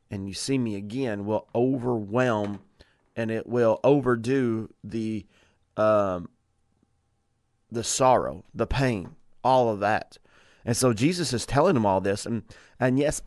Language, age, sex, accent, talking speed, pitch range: English, 30-49, male, American, 140 wpm, 105-125 Hz